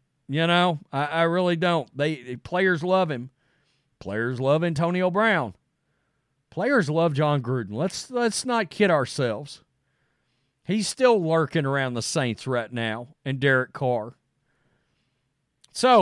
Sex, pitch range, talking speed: male, 145-210 Hz, 135 wpm